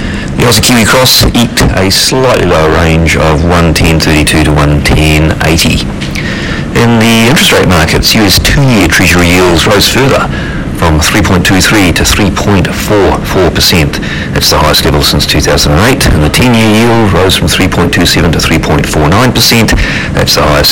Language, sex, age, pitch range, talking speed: English, male, 40-59, 75-105 Hz, 135 wpm